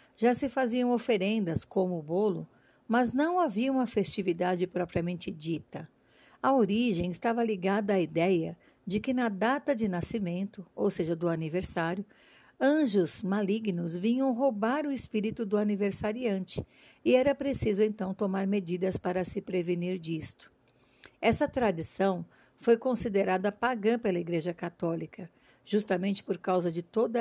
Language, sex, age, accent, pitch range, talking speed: Portuguese, female, 50-69, Brazilian, 185-235 Hz, 135 wpm